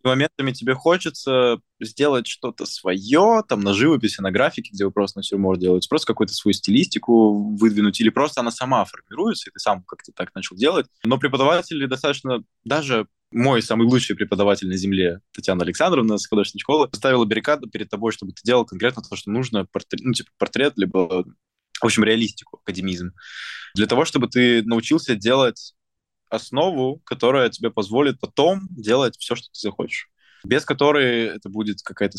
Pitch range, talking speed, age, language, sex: 95-130 Hz, 170 wpm, 20-39, Russian, male